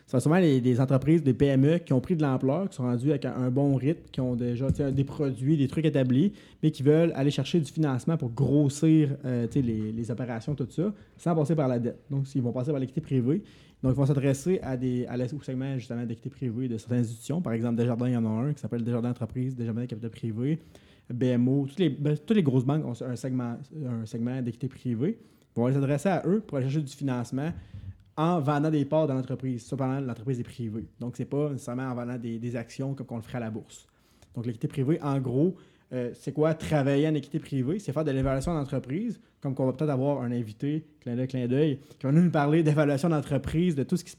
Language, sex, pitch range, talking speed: French, male, 125-150 Hz, 240 wpm